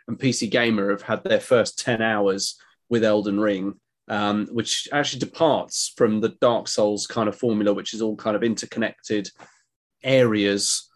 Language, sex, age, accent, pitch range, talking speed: English, male, 30-49, British, 105-120 Hz, 165 wpm